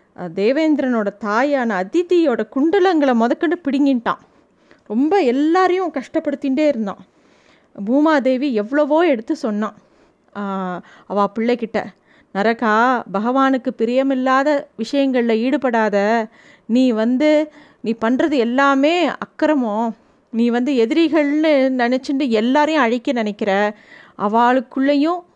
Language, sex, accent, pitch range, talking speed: Tamil, female, native, 220-280 Hz, 85 wpm